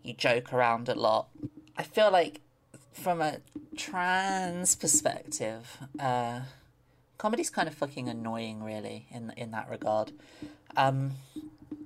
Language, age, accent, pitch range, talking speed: English, 20-39, British, 120-155 Hz, 120 wpm